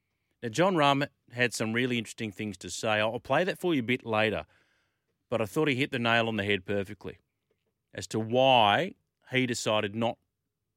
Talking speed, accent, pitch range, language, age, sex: 195 wpm, Australian, 105-145 Hz, English, 40-59, male